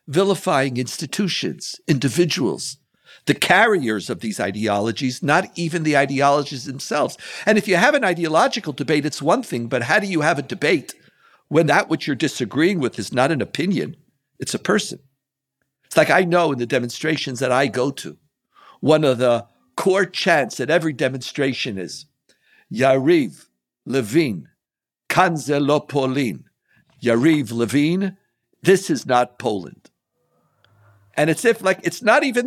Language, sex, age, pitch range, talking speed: English, male, 60-79, 130-175 Hz, 145 wpm